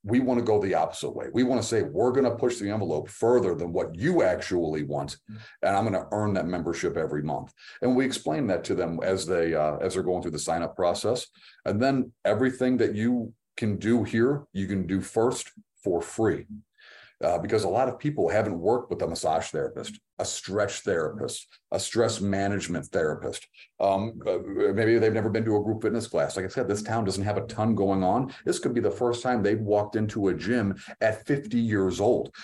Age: 40-59